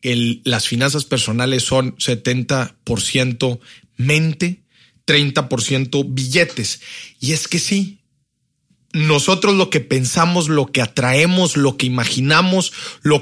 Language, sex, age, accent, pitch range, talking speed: Spanish, male, 40-59, Mexican, 120-150 Hz, 110 wpm